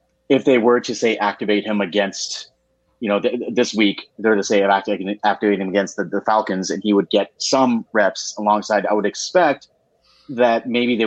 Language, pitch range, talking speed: English, 100-115 Hz, 190 wpm